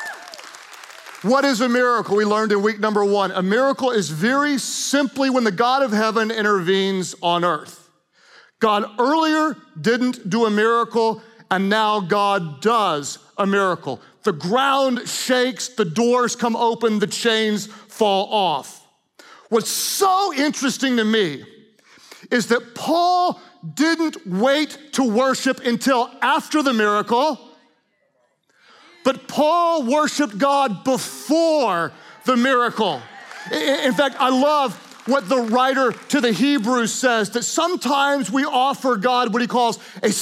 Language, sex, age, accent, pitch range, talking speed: English, male, 40-59, American, 225-285 Hz, 135 wpm